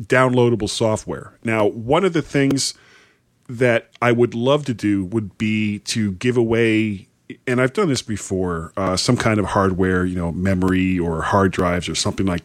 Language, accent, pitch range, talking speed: English, American, 95-125 Hz, 180 wpm